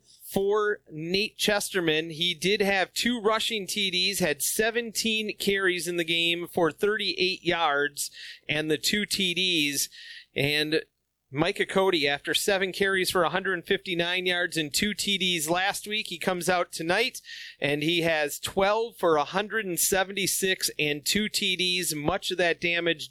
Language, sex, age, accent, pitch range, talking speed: English, male, 40-59, American, 165-200 Hz, 140 wpm